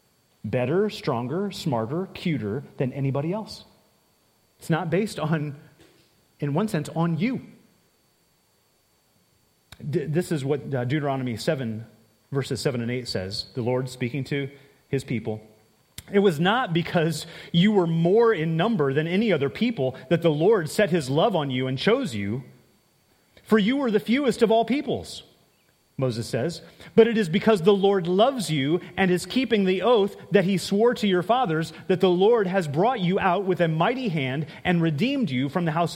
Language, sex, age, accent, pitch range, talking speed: English, male, 30-49, American, 150-205 Hz, 170 wpm